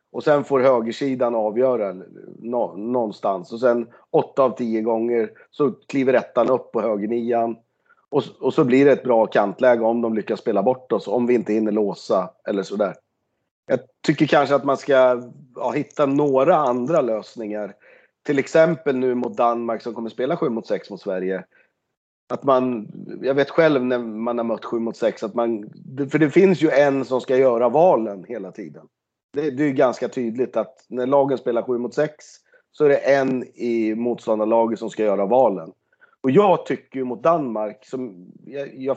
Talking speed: 185 wpm